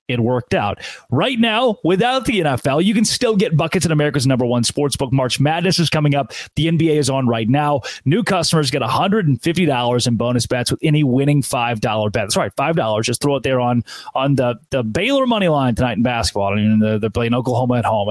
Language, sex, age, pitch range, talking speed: English, male, 30-49, 125-180 Hz, 240 wpm